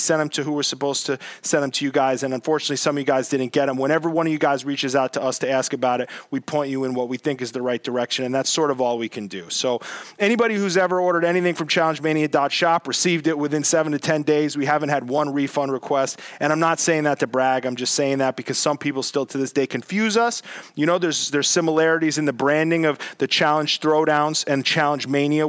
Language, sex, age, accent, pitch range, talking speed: English, male, 30-49, American, 135-160 Hz, 255 wpm